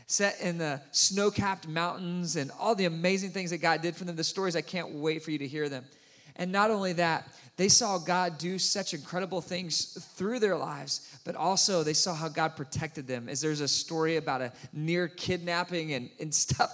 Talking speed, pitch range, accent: 210 wpm, 155-200 Hz, American